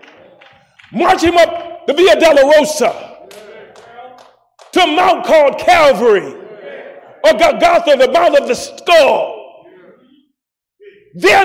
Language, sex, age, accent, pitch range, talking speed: English, male, 40-59, American, 300-370 Hz, 100 wpm